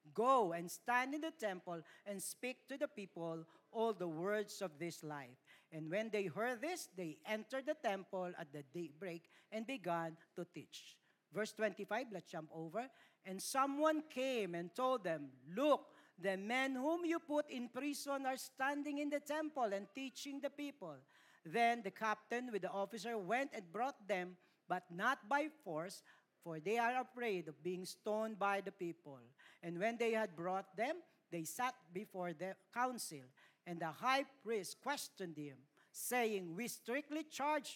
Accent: native